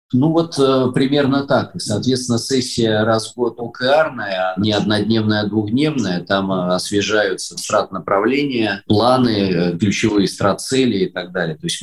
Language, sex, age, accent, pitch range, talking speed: Russian, male, 20-39, native, 95-120 Hz, 140 wpm